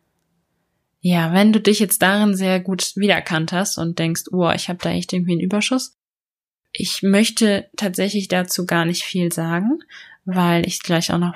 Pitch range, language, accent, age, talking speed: 170-200 Hz, German, German, 20-39, 175 wpm